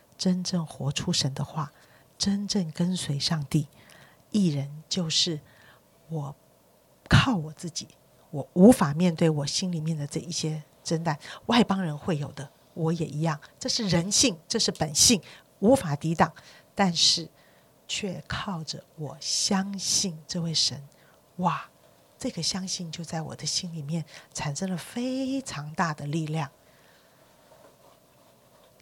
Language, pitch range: Chinese, 150-180 Hz